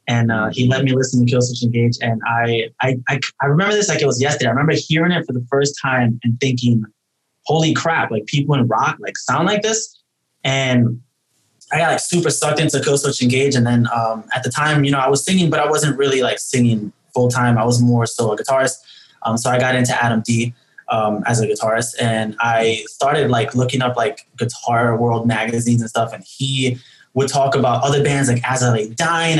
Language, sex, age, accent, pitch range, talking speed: English, male, 20-39, American, 120-145 Hz, 220 wpm